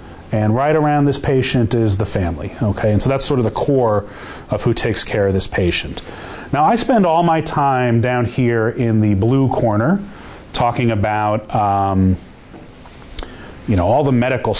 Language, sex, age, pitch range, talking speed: English, male, 30-49, 100-140 Hz, 175 wpm